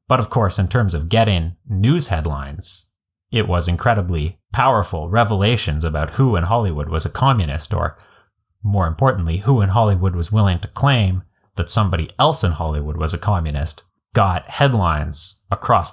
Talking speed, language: 160 wpm, English